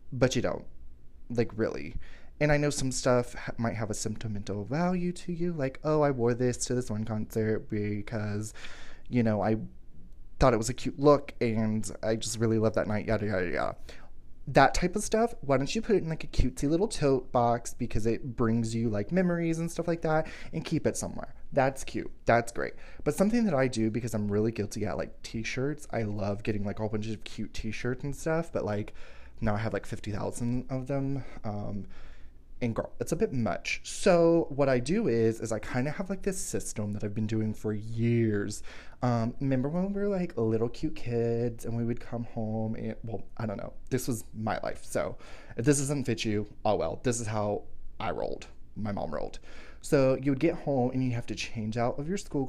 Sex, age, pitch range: male, 20-39, 110-140 Hz